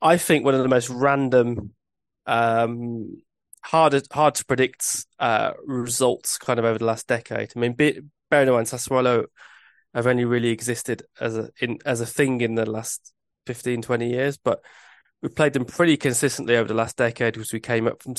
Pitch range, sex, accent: 115-135 Hz, male, British